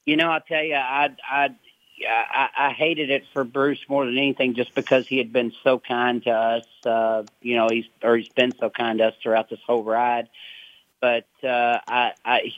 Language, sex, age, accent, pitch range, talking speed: English, male, 40-59, American, 125-150 Hz, 195 wpm